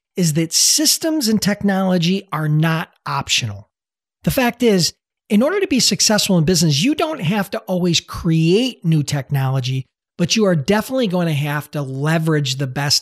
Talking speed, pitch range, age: 170 wpm, 145-195 Hz, 40-59